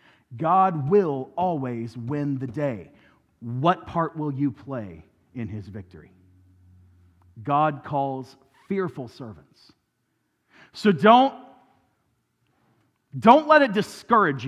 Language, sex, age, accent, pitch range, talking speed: English, male, 40-59, American, 140-225 Hz, 100 wpm